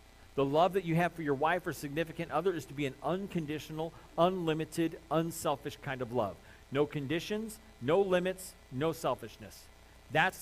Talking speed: 160 wpm